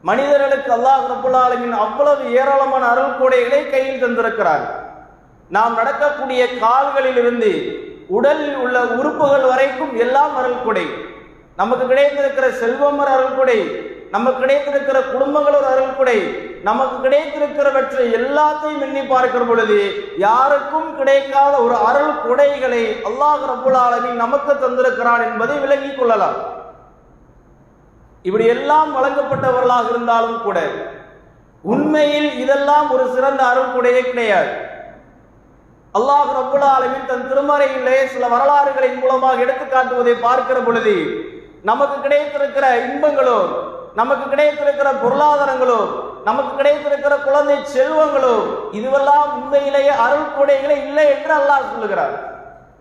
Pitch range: 255-290 Hz